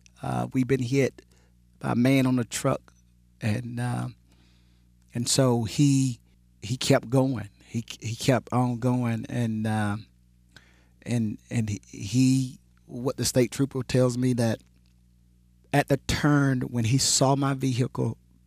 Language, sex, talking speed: English, male, 150 wpm